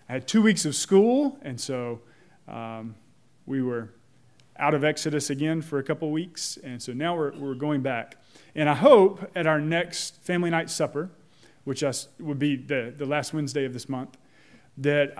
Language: English